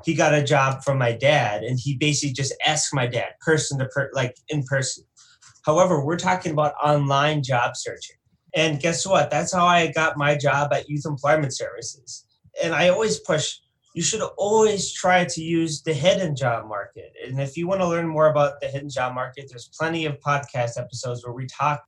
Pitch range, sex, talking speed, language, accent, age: 125-155 Hz, male, 205 wpm, English, American, 20-39